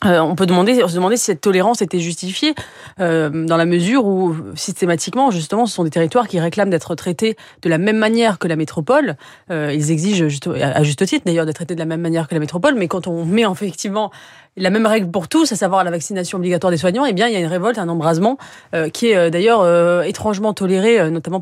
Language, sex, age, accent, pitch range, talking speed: French, female, 30-49, French, 160-200 Hz, 245 wpm